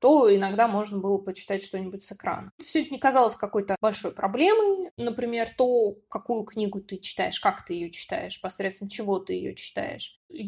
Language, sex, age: Russian, female, 20-39